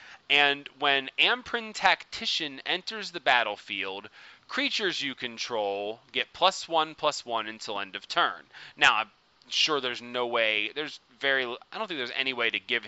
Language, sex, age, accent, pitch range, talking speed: English, male, 30-49, American, 120-160 Hz, 165 wpm